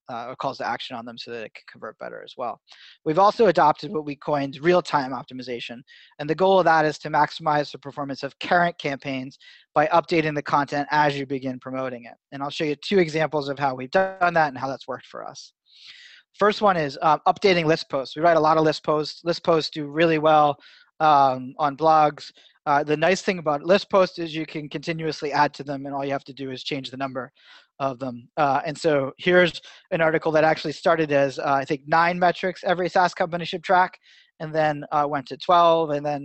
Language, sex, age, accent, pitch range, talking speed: Finnish, male, 30-49, American, 140-170 Hz, 230 wpm